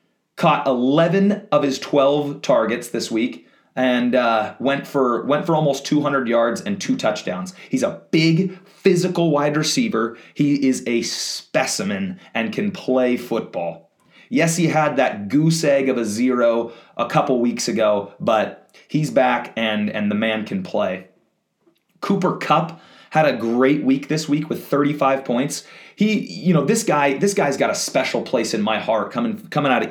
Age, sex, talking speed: 30-49, male, 175 wpm